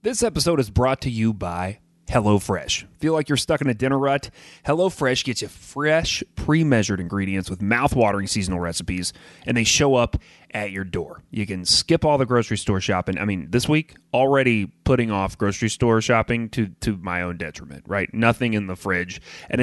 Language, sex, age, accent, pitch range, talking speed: English, male, 30-49, American, 100-130 Hz, 190 wpm